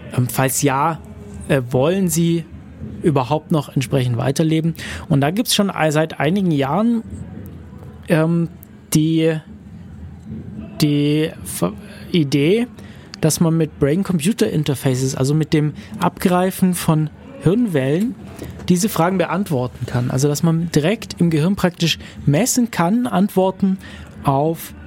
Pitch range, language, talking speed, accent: 135-175 Hz, German, 110 wpm, German